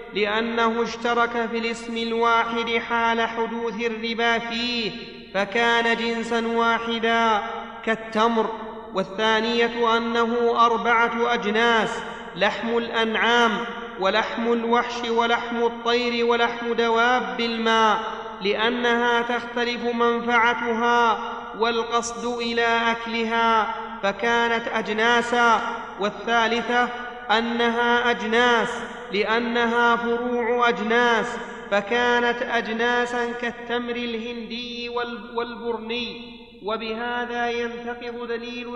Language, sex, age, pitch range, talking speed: Arabic, male, 30-49, 230-240 Hz, 75 wpm